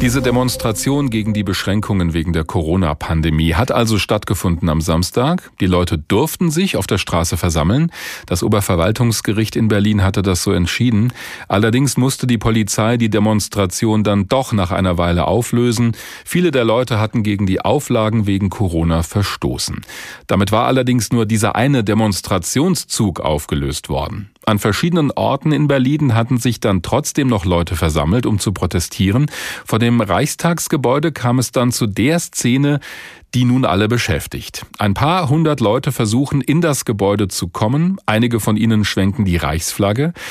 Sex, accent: male, German